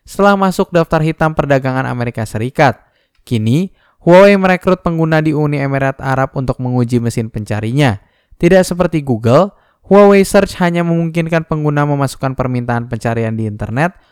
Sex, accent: male, native